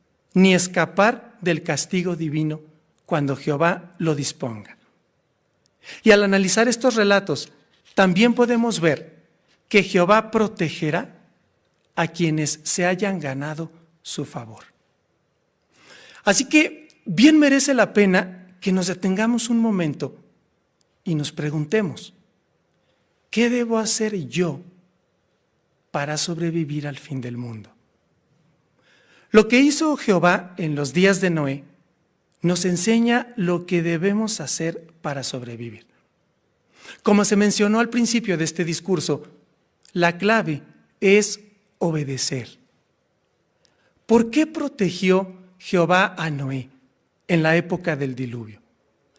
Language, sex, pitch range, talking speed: Spanish, male, 155-210 Hz, 110 wpm